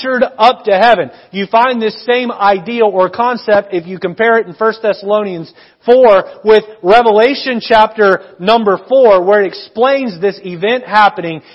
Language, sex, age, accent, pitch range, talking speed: English, male, 40-59, American, 180-240 Hz, 150 wpm